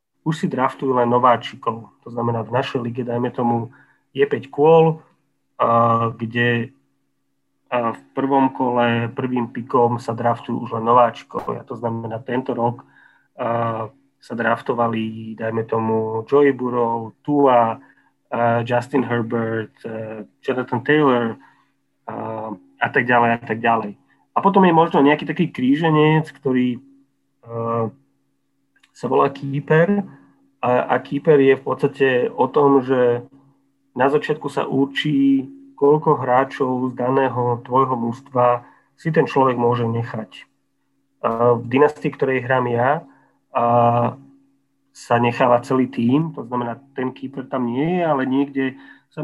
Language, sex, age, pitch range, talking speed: Slovak, male, 30-49, 115-135 Hz, 135 wpm